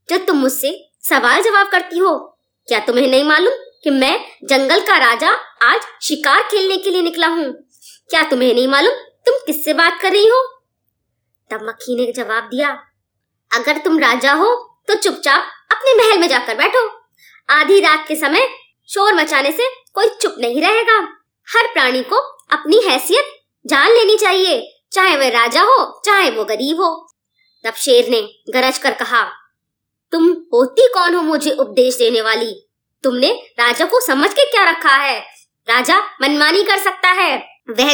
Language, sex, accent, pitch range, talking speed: Hindi, male, native, 290-405 Hz, 165 wpm